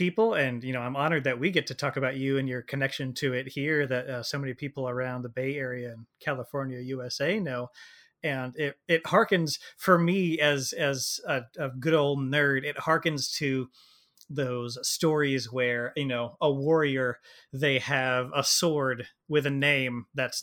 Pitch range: 130-155 Hz